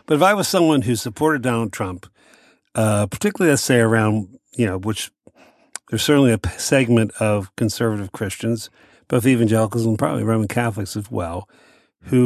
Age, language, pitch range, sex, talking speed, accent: 50-69, English, 105-125 Hz, male, 165 wpm, American